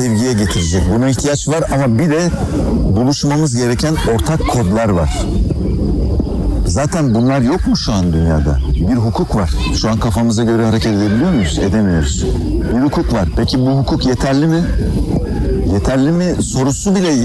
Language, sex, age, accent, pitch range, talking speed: Turkish, male, 60-79, native, 95-130 Hz, 150 wpm